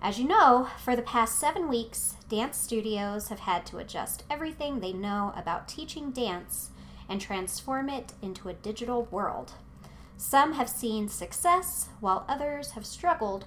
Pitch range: 180-260 Hz